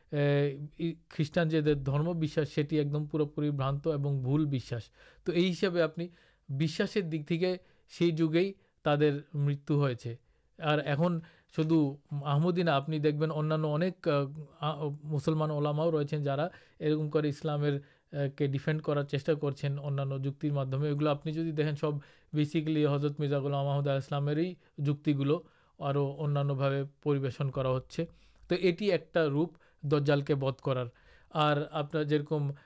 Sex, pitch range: male, 145-165 Hz